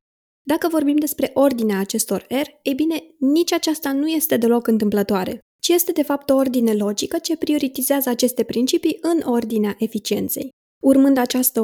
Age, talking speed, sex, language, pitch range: 20-39, 155 wpm, female, Romanian, 225-285 Hz